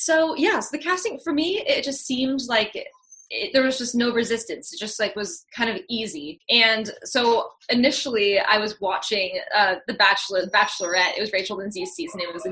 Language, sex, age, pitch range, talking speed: English, female, 10-29, 195-240 Hz, 215 wpm